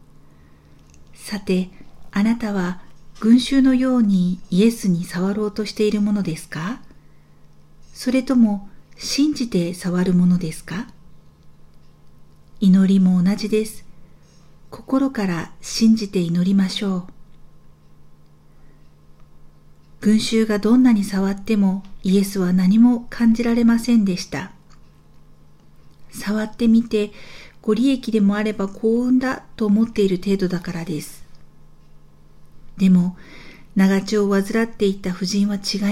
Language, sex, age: Japanese, female, 50-69